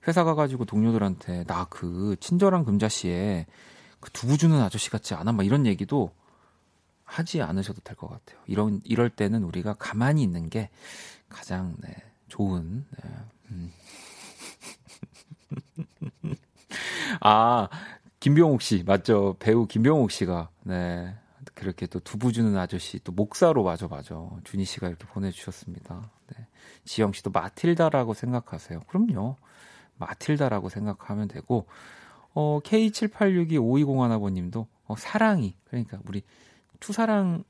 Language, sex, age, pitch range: Korean, male, 40-59, 95-140 Hz